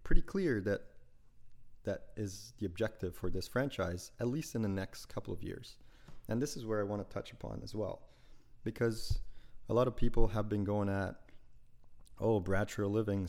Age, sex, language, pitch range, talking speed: 30-49, male, English, 100-120 Hz, 185 wpm